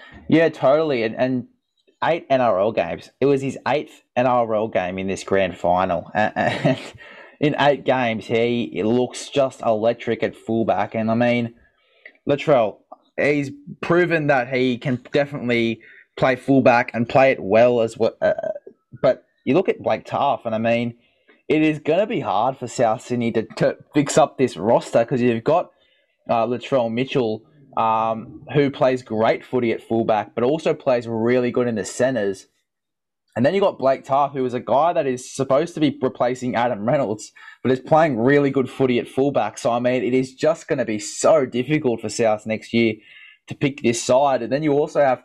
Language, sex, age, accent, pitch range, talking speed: English, male, 20-39, Australian, 115-135 Hz, 190 wpm